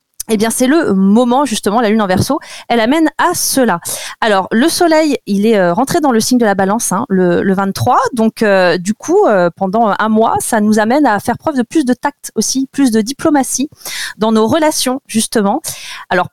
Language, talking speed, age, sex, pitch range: French, 215 wpm, 30-49, female, 200-270 Hz